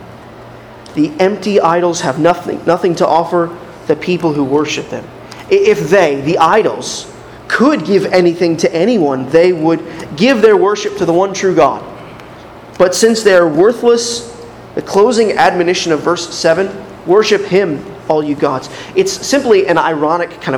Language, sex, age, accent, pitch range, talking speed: English, male, 30-49, American, 150-195 Hz, 150 wpm